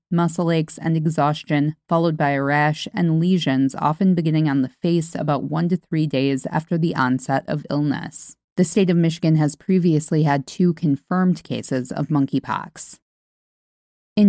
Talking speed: 160 wpm